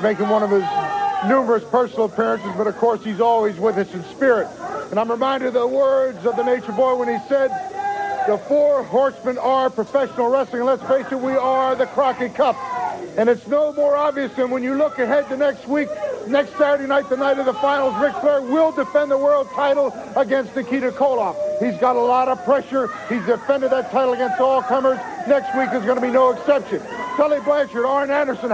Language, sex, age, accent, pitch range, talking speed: English, male, 50-69, American, 255-305 Hz, 210 wpm